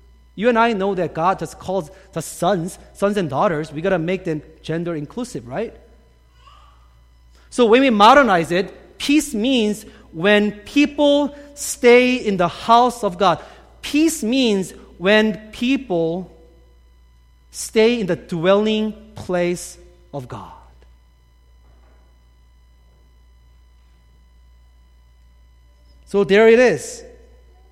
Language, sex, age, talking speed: English, male, 40-59, 110 wpm